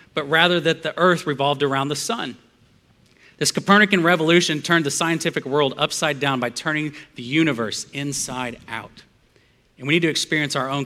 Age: 40-59